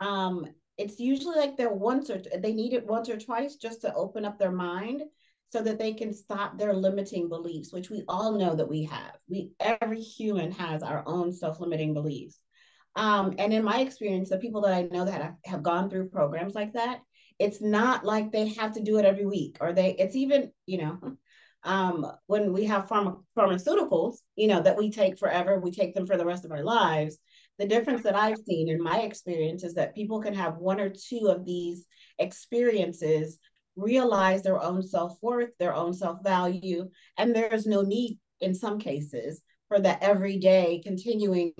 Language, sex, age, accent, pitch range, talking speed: English, female, 30-49, American, 175-215 Hz, 190 wpm